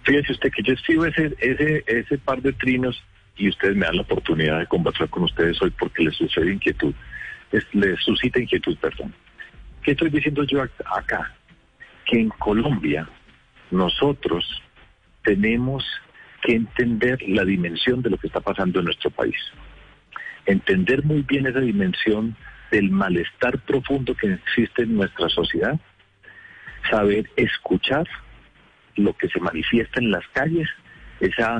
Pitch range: 110-150 Hz